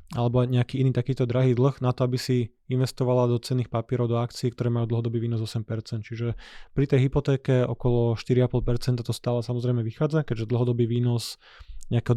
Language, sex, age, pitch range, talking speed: Slovak, male, 20-39, 115-130 Hz, 175 wpm